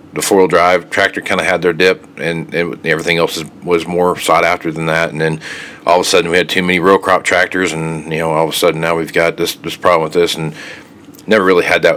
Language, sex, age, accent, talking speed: English, male, 40-59, American, 270 wpm